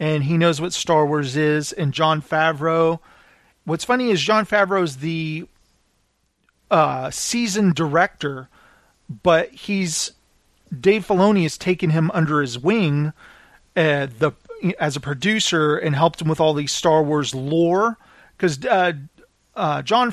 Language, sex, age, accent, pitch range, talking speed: English, male, 40-59, American, 150-180 Hz, 140 wpm